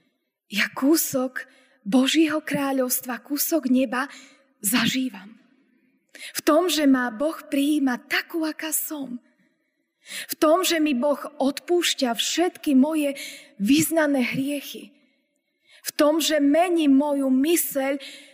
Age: 20-39